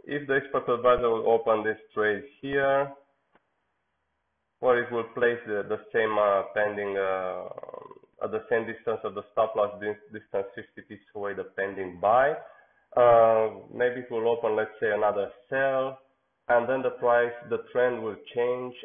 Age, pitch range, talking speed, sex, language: 20-39, 100-120 Hz, 165 wpm, male, English